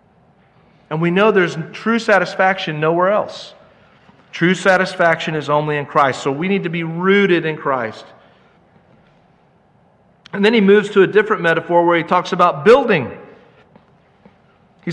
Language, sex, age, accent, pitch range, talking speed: English, male, 50-69, American, 140-185 Hz, 145 wpm